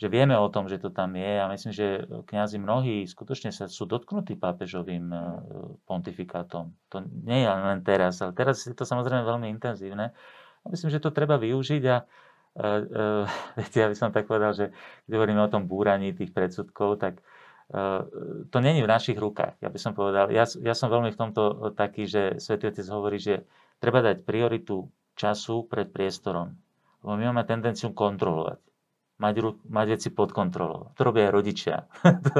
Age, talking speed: 40-59, 180 wpm